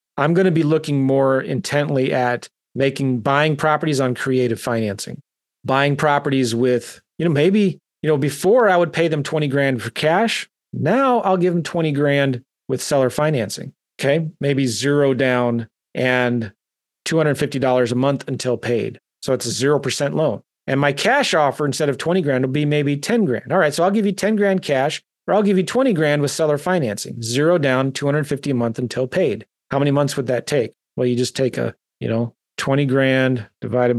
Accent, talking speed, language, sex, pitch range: American, 190 wpm, English, male, 125-155 Hz